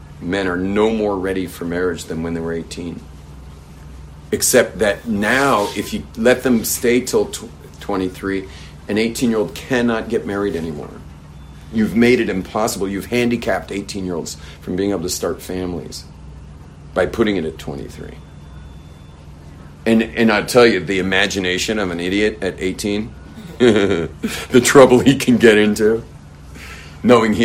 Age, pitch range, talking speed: 40-59, 75-100 Hz, 145 wpm